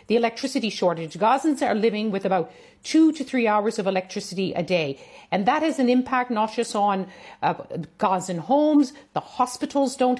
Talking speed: 175 wpm